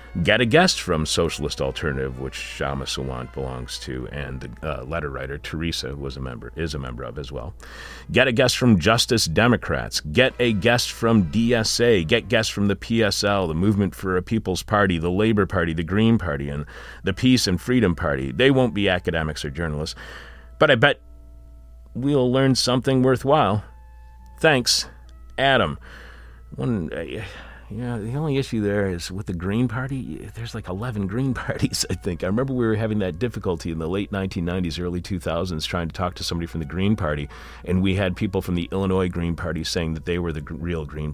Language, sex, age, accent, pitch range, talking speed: English, male, 40-59, American, 75-110 Hz, 190 wpm